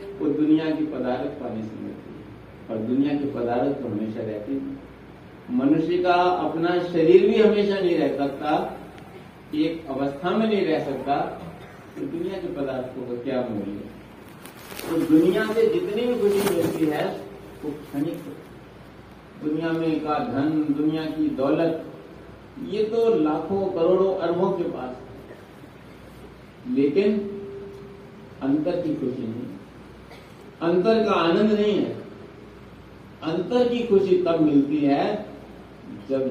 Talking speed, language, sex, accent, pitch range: 130 wpm, Hindi, male, native, 125-185 Hz